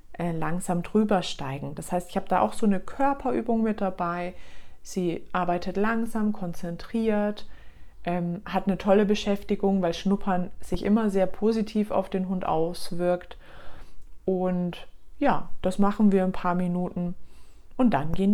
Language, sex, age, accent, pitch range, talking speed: German, female, 30-49, German, 170-210 Hz, 145 wpm